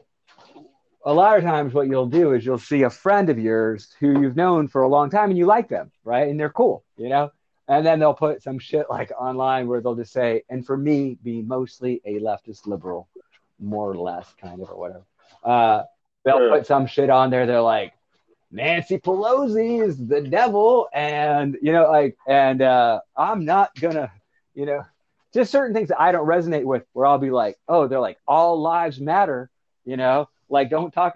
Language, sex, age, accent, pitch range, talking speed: English, male, 30-49, American, 130-185 Hz, 205 wpm